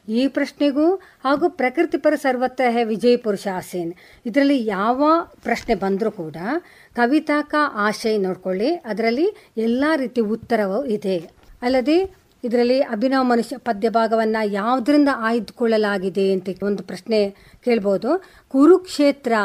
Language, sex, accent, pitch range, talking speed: Kannada, female, native, 210-270 Hz, 100 wpm